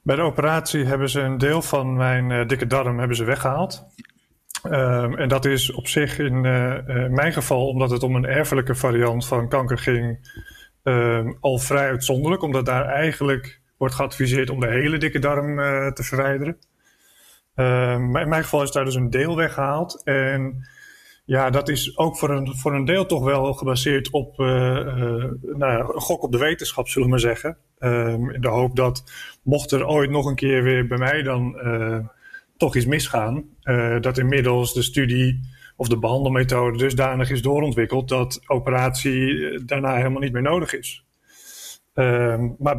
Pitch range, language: 125-140 Hz, Dutch